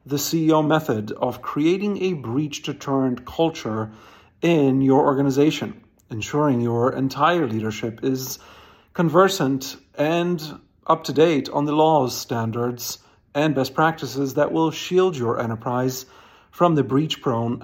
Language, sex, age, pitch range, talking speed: English, male, 50-69, 125-155 Hz, 130 wpm